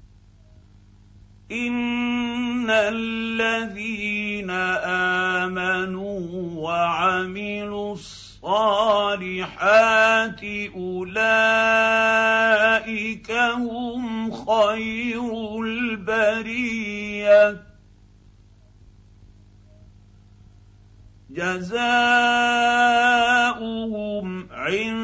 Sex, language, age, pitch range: male, Arabic, 50-69, 170-225 Hz